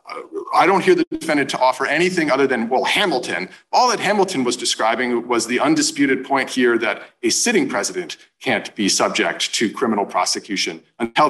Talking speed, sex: 175 wpm, male